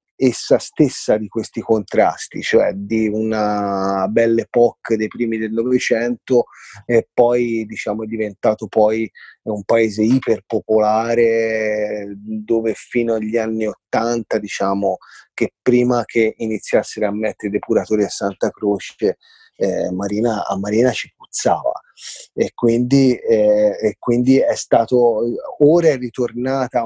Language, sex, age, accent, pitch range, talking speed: Italian, male, 30-49, native, 110-125 Hz, 125 wpm